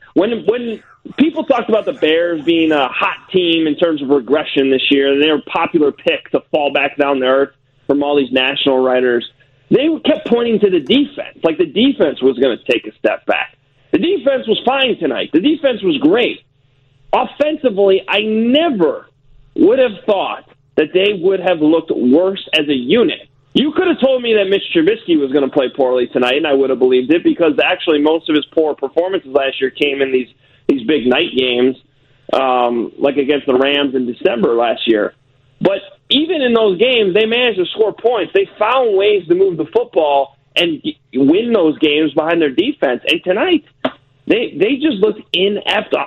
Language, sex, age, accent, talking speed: English, male, 30-49, American, 195 wpm